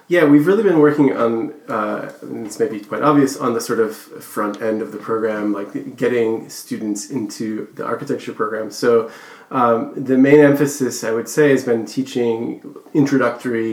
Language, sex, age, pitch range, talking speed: English, male, 20-39, 110-140 Hz, 175 wpm